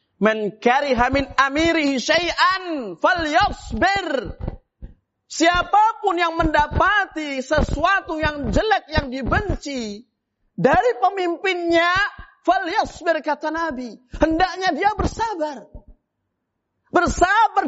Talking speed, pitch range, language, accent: 65 wpm, 240-345 Hz, Indonesian, native